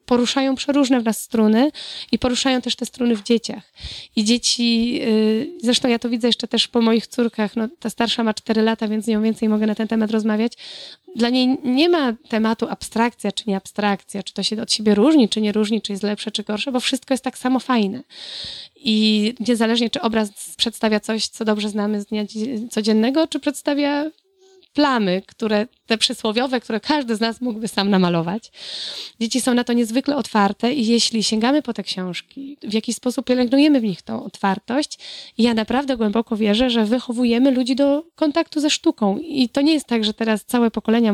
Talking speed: 195 wpm